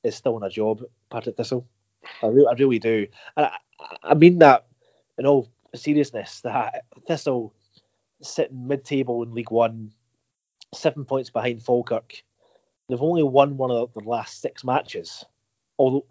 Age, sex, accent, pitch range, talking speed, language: 30-49, male, British, 115-140 Hz, 160 wpm, English